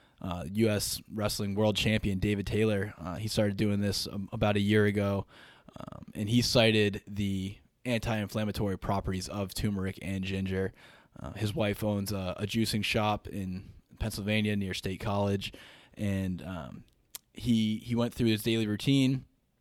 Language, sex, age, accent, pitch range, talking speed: English, male, 10-29, American, 100-115 Hz, 155 wpm